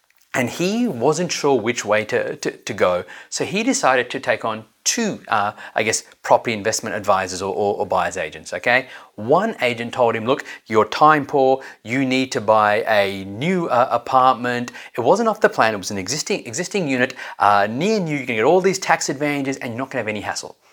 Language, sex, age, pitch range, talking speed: English, male, 30-49, 120-160 Hz, 210 wpm